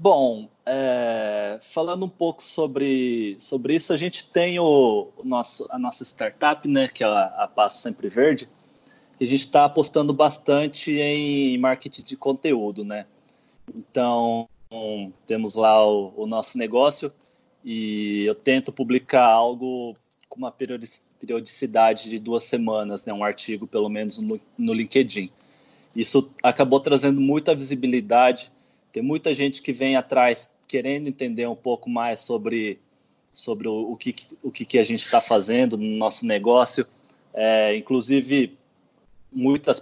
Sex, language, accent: male, Portuguese, Brazilian